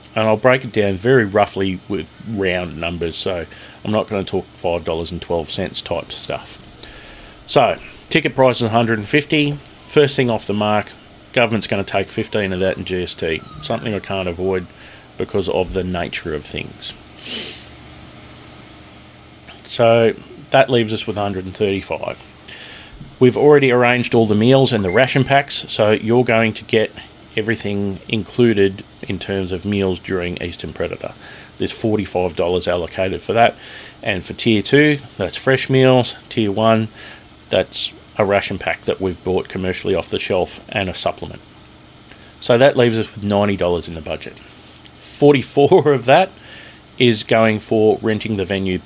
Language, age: English, 30-49